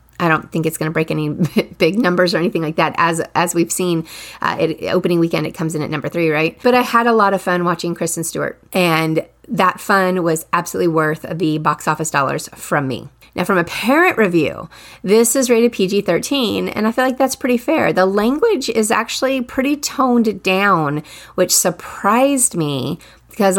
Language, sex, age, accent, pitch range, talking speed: English, female, 30-49, American, 160-200 Hz, 200 wpm